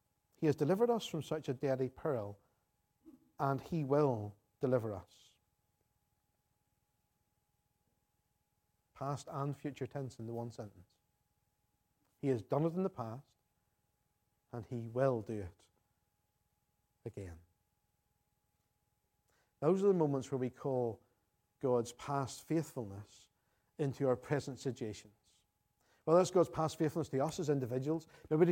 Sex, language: male, English